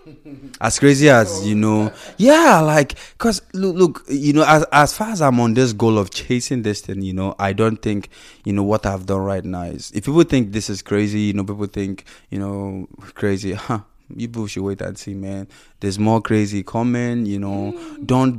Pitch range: 100-135 Hz